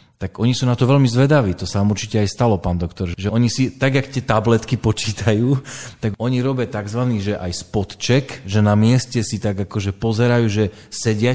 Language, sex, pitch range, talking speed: Slovak, male, 95-120 Hz, 205 wpm